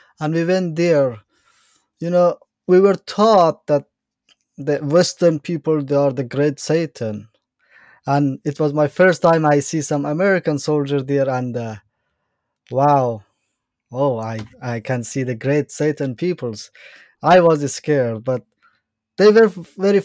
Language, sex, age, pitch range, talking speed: English, male, 20-39, 125-155 Hz, 145 wpm